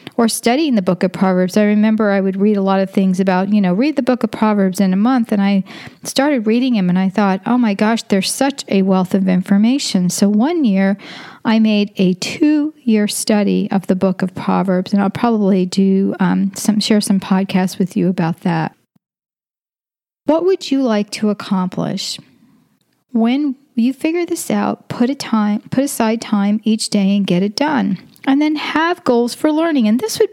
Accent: American